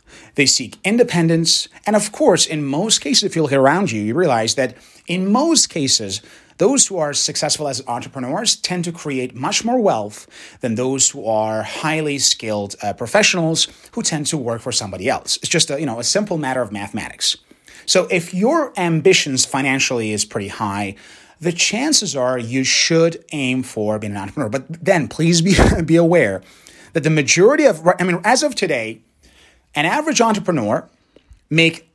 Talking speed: 175 wpm